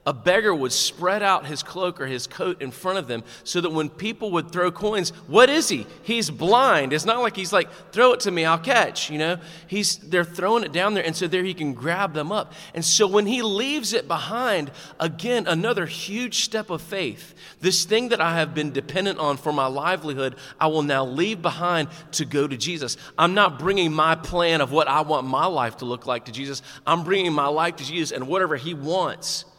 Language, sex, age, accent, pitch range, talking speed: English, male, 30-49, American, 145-190 Hz, 225 wpm